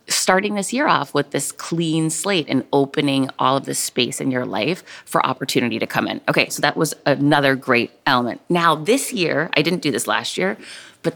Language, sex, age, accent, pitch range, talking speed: English, female, 30-49, American, 135-175 Hz, 210 wpm